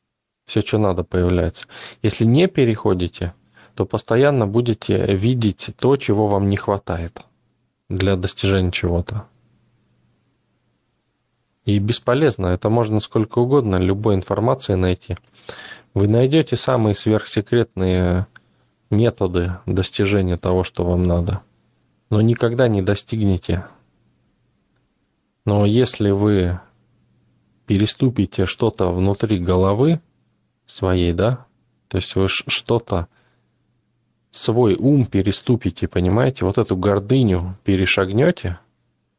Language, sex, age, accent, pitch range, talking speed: Russian, male, 20-39, native, 95-115 Hz, 95 wpm